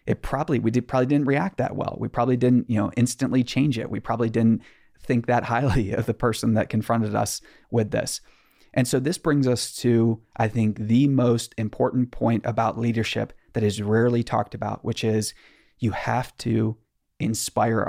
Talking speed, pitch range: 190 wpm, 110-125 Hz